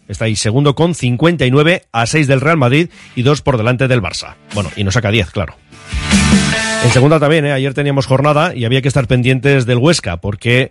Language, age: Spanish, 40-59